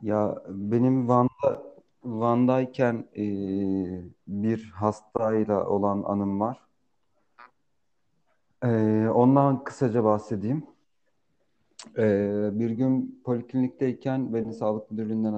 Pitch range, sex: 105-125 Hz, male